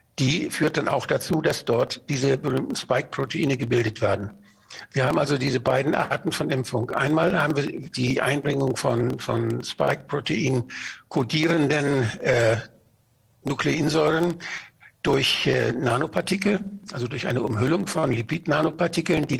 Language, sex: Russian, male